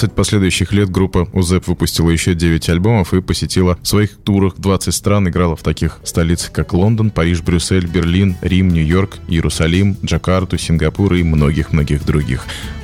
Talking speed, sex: 155 wpm, male